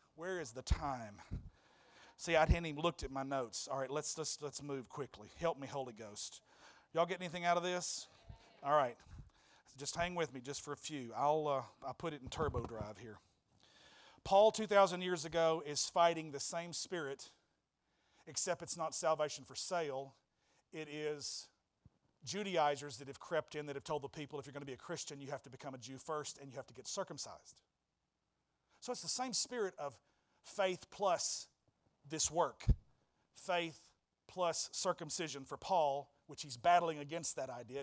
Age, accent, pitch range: 40-59, American, 140-175 Hz